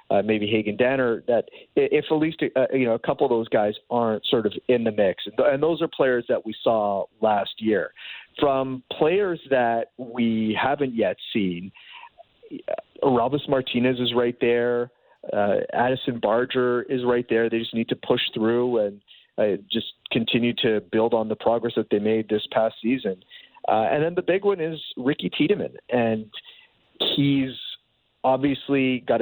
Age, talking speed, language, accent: 40-59, 170 wpm, English, American